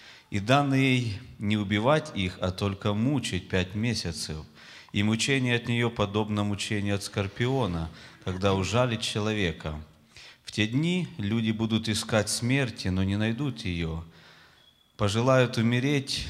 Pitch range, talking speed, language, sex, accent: 95-120 Hz, 130 wpm, Russian, male, native